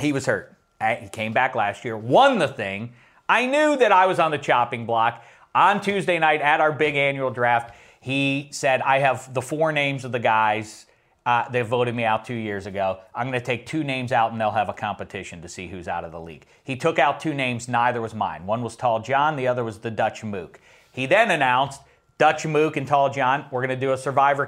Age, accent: 40-59, American